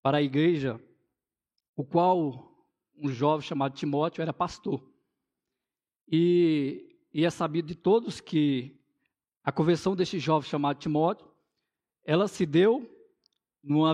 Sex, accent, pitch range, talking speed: male, Brazilian, 150-200 Hz, 120 wpm